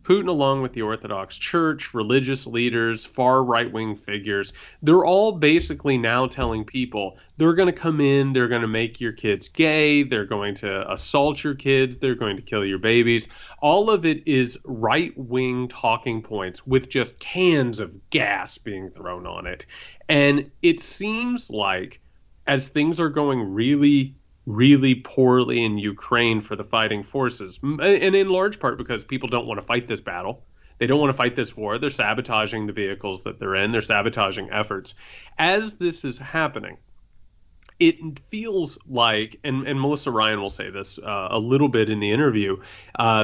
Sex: male